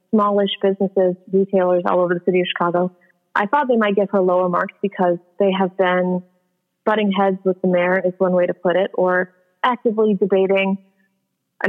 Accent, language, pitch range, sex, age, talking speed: American, English, 180-200 Hz, female, 30-49, 185 wpm